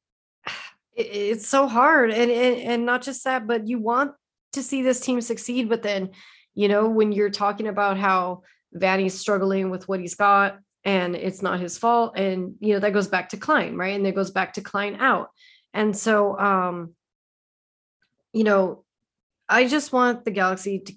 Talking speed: 185 wpm